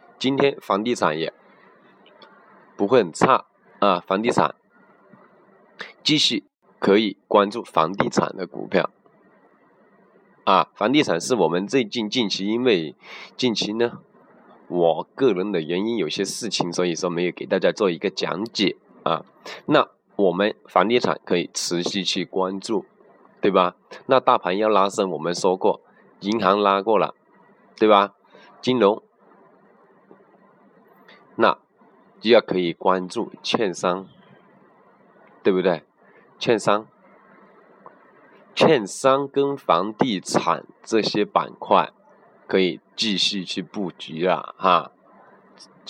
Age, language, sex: 20-39, Chinese, male